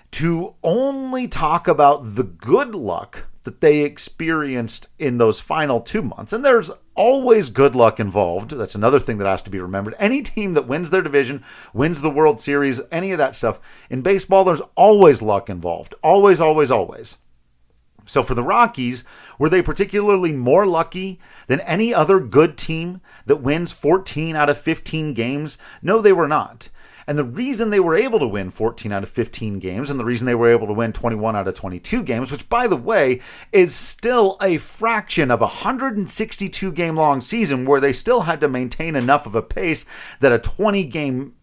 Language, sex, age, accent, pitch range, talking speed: English, male, 40-59, American, 120-190 Hz, 190 wpm